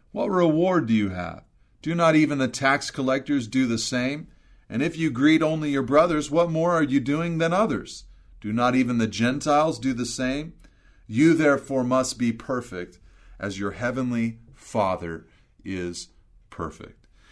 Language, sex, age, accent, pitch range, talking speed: English, male, 40-59, American, 115-155 Hz, 165 wpm